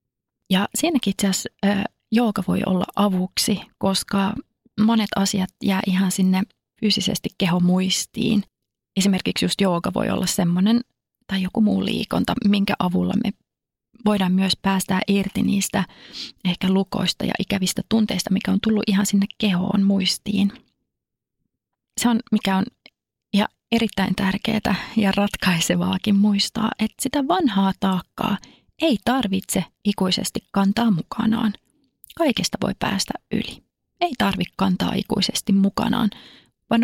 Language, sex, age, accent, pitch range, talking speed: Finnish, female, 30-49, native, 190-225 Hz, 120 wpm